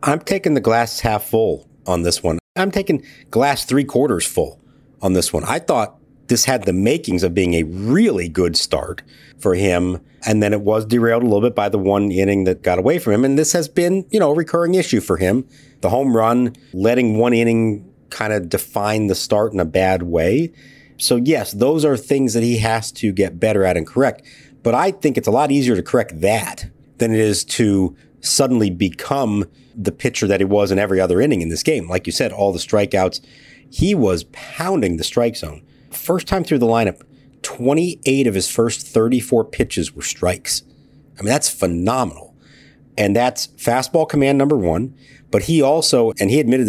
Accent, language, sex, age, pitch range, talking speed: American, English, male, 50-69, 100-140 Hz, 205 wpm